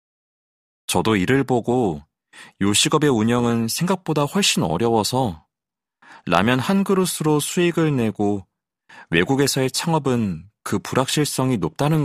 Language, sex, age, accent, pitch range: Korean, male, 30-49, native, 105-150 Hz